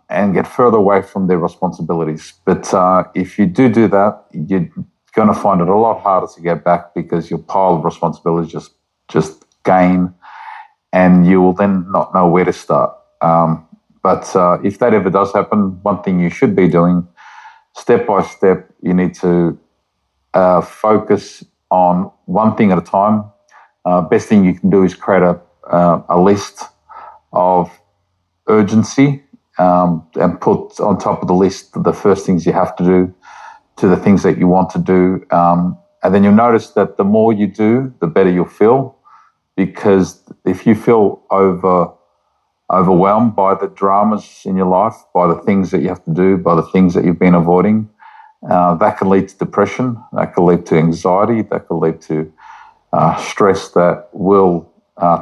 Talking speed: 185 wpm